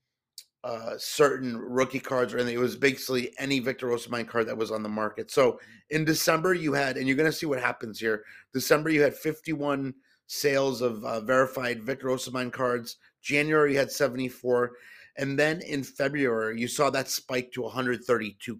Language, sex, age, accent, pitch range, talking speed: English, male, 30-49, American, 120-140 Hz, 175 wpm